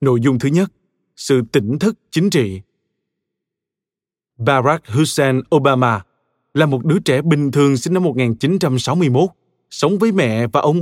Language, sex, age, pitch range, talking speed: Vietnamese, male, 20-39, 125-170 Hz, 145 wpm